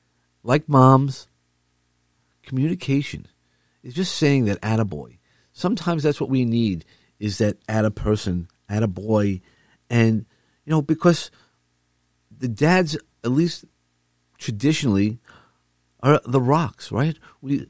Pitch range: 90-140 Hz